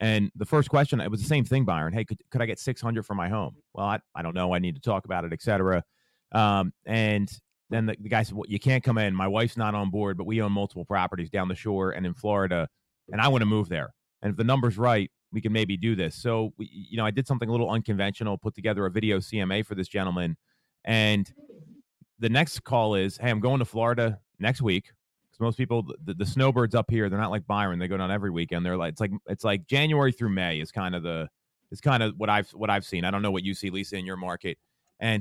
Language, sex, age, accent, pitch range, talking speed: English, male, 30-49, American, 100-120 Hz, 260 wpm